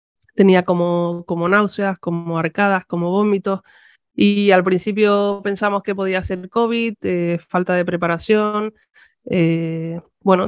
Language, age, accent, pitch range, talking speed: Spanish, 20-39, Spanish, 175-200 Hz, 125 wpm